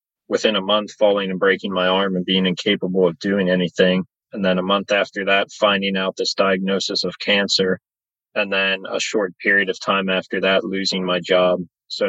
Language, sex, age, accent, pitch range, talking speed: English, male, 30-49, American, 95-100 Hz, 195 wpm